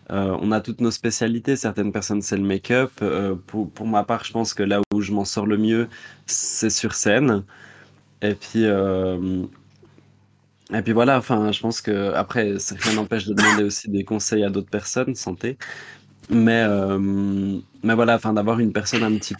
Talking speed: 185 wpm